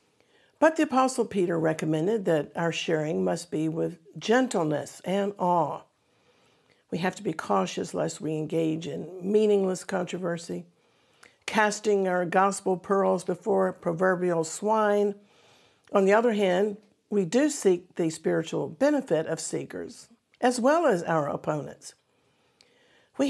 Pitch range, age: 165-230 Hz, 50-69